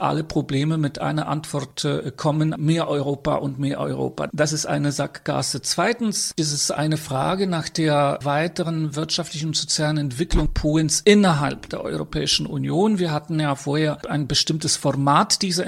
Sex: male